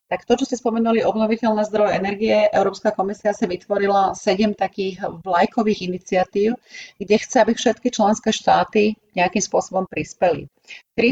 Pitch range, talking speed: 185-220 Hz, 140 wpm